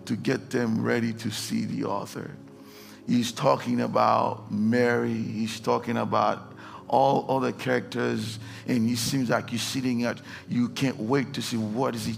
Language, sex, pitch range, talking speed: English, male, 120-165 Hz, 165 wpm